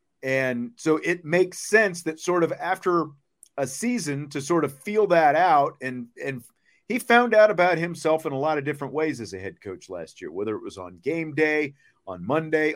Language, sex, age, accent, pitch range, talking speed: English, male, 40-59, American, 125-170 Hz, 205 wpm